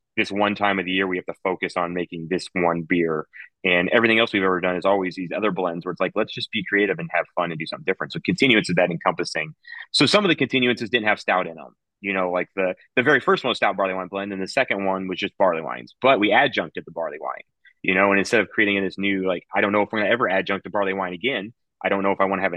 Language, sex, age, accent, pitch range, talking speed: English, male, 30-49, American, 90-105 Hz, 295 wpm